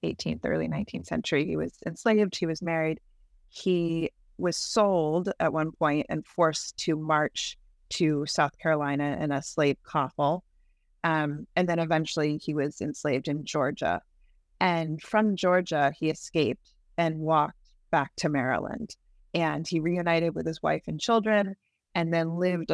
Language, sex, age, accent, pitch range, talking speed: English, female, 30-49, American, 145-170 Hz, 150 wpm